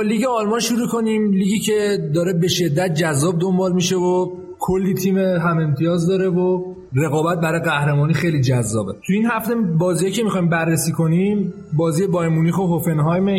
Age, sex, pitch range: 30-49, male, 160-190 Hz